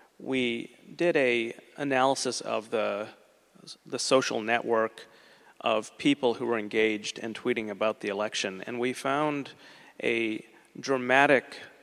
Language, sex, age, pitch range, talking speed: Greek, male, 40-59, 115-135 Hz, 120 wpm